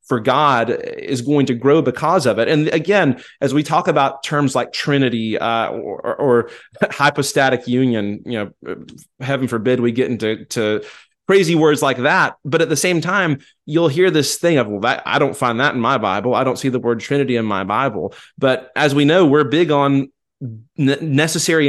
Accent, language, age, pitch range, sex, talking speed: American, English, 30-49, 125-150 Hz, male, 200 wpm